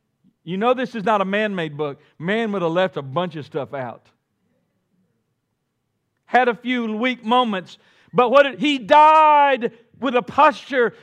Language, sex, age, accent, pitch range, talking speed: English, male, 50-69, American, 130-215 Hz, 150 wpm